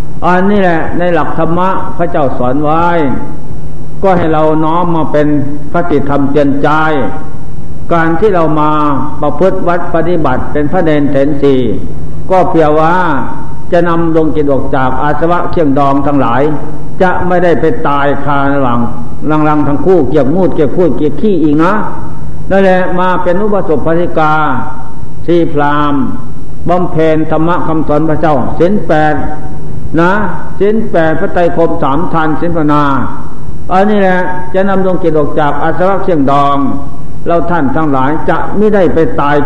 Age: 60-79